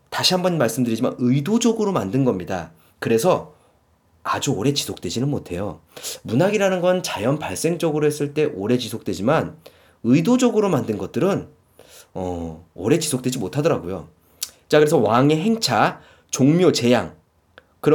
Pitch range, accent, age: 125-185 Hz, native, 30-49